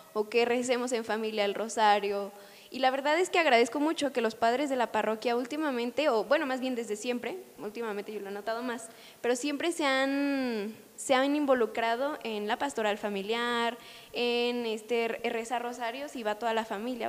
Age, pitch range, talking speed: 10-29, 230-275 Hz, 185 wpm